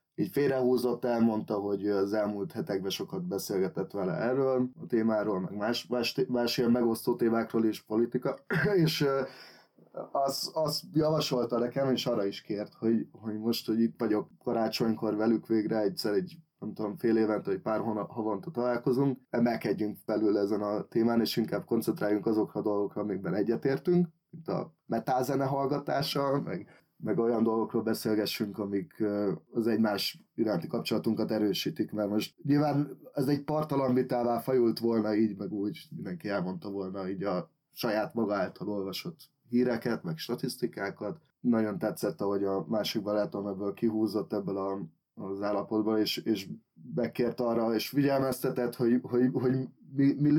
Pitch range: 105-135 Hz